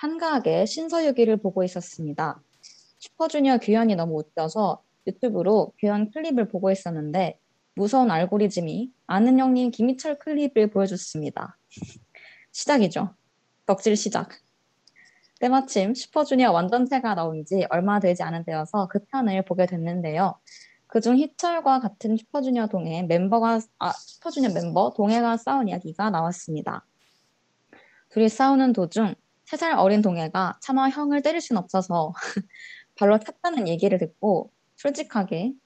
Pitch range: 185-250 Hz